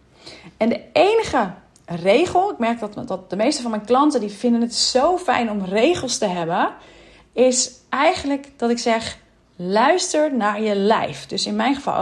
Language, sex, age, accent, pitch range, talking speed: Dutch, female, 40-59, Dutch, 200-270 Hz, 175 wpm